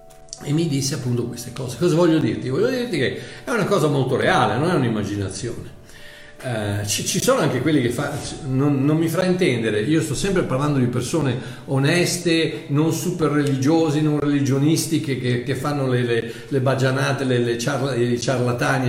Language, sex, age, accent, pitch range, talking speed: Italian, male, 50-69, native, 125-170 Hz, 165 wpm